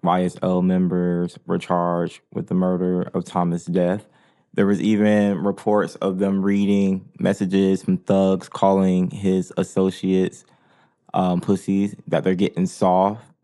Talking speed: 130 wpm